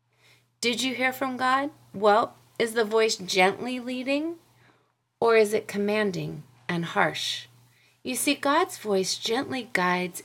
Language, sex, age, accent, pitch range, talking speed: English, female, 30-49, American, 170-250 Hz, 135 wpm